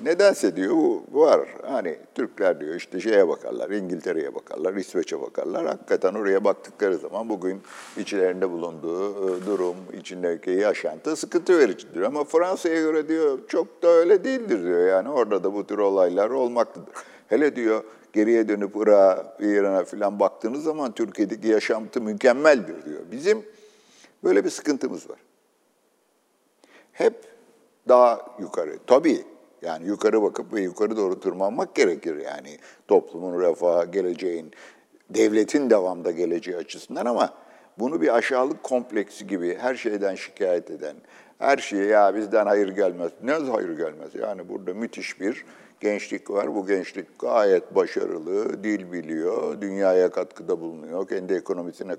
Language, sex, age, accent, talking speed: Turkish, male, 60-79, native, 135 wpm